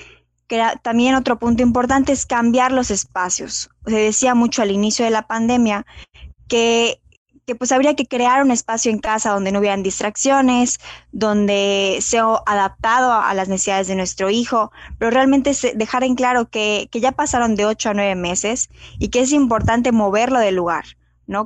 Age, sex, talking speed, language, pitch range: 20-39, female, 175 wpm, Spanish, 195-240 Hz